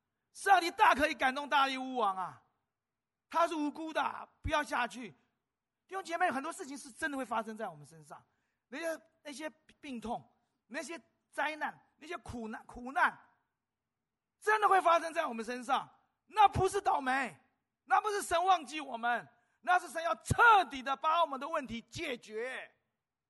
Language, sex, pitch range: Chinese, male, 215-325 Hz